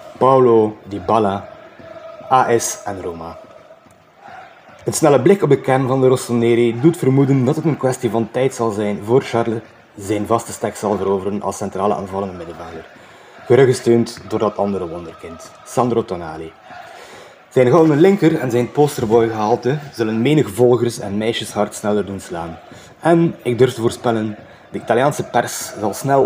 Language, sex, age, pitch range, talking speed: Dutch, male, 20-39, 105-130 Hz, 155 wpm